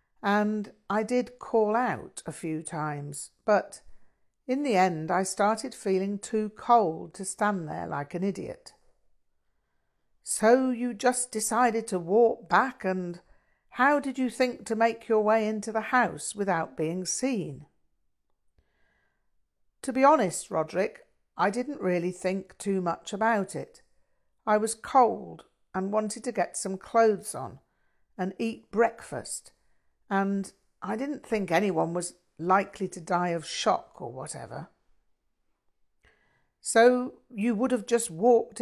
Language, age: English, 50-69